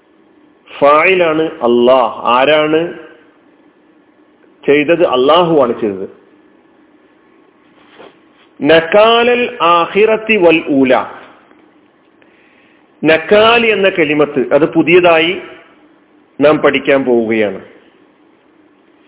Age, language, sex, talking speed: 40-59, Malayalam, male, 45 wpm